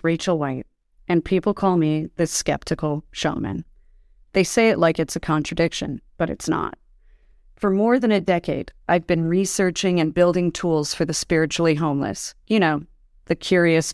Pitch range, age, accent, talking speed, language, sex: 160-190 Hz, 30-49, American, 165 wpm, English, female